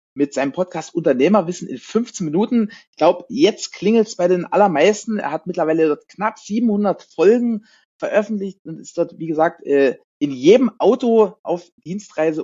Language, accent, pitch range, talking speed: German, German, 170-225 Hz, 160 wpm